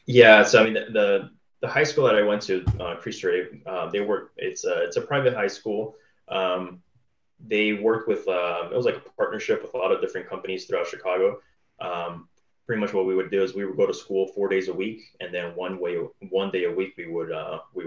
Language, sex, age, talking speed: English, male, 20-39, 240 wpm